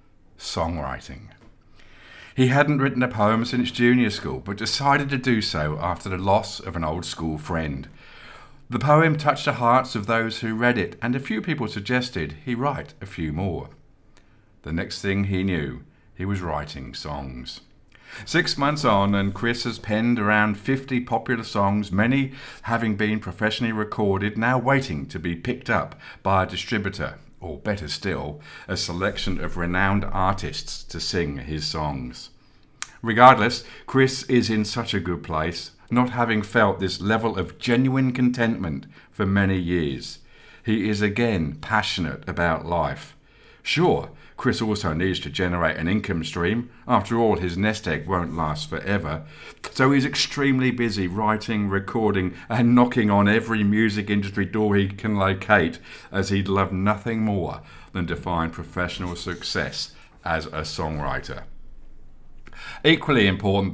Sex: male